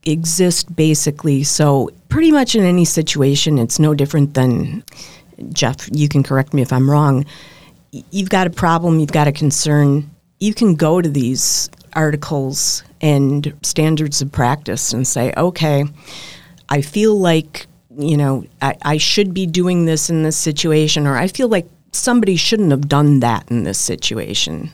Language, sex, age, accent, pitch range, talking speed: English, female, 50-69, American, 140-170 Hz, 165 wpm